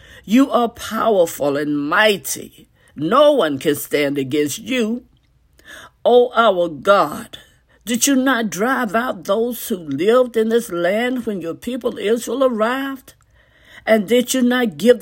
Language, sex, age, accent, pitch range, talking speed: English, female, 50-69, American, 200-260 Hz, 145 wpm